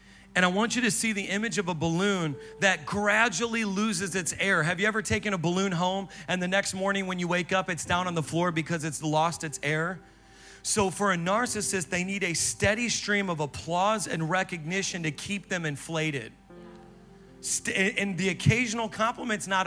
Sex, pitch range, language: male, 165-205 Hz, English